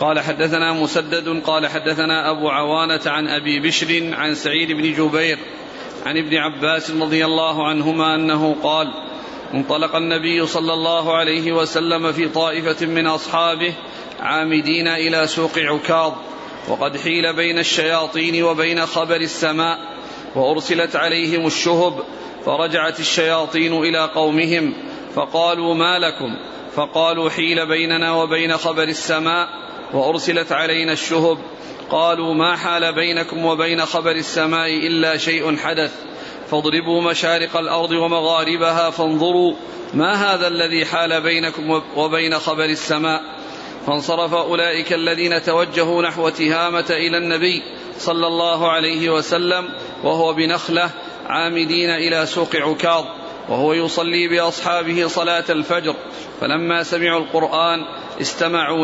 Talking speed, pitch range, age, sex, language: 115 wpm, 160-170 Hz, 40-59, male, Arabic